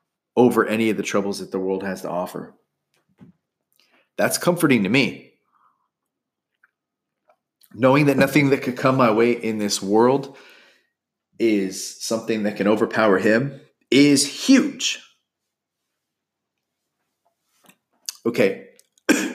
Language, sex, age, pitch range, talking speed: English, male, 30-49, 105-140 Hz, 110 wpm